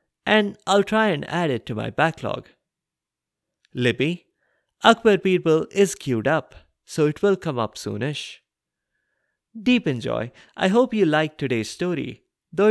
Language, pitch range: English, 125-200 Hz